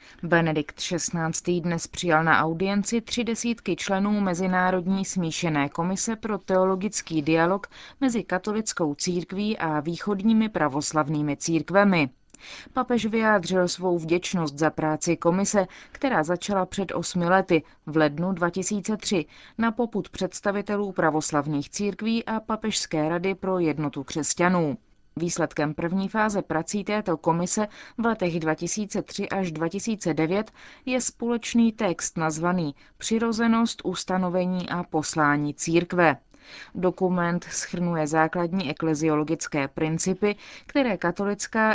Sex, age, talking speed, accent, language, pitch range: female, 30-49, 110 wpm, native, Czech, 165-205 Hz